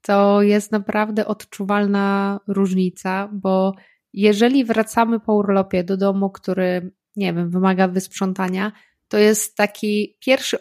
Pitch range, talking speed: 190-215 Hz, 120 wpm